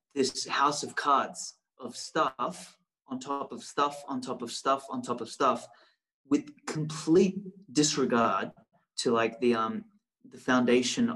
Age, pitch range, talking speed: 30-49, 120-180 Hz, 145 wpm